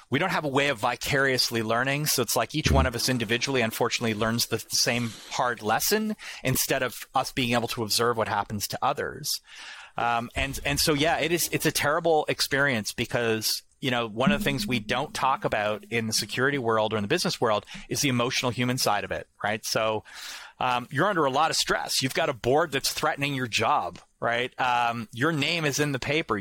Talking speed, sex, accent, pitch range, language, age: 220 wpm, male, American, 115-145 Hz, English, 30-49